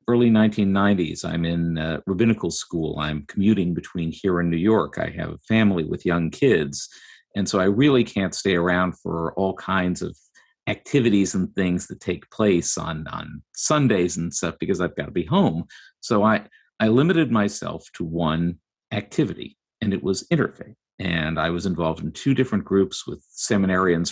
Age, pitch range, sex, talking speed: 50-69, 90-120 Hz, male, 175 wpm